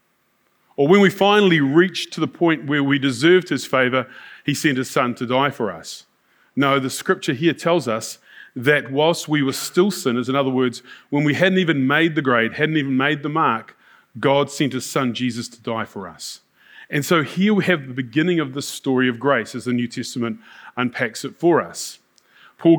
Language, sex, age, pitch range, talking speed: English, male, 30-49, 130-165 Hz, 205 wpm